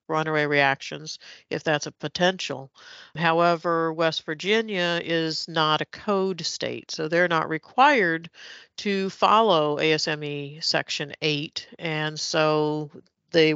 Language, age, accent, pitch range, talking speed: English, 50-69, American, 145-170 Hz, 115 wpm